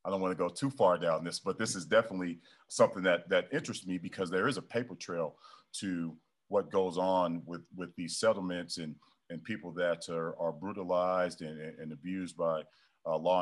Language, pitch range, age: English, 85-95 Hz, 40-59